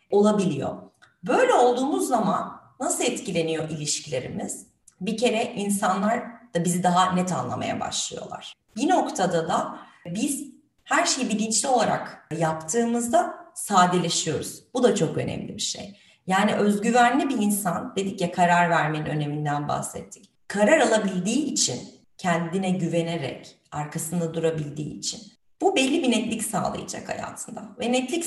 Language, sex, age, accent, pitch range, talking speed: Turkish, female, 30-49, native, 175-240 Hz, 125 wpm